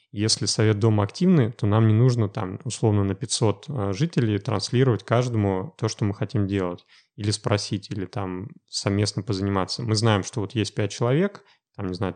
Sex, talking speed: male, 180 wpm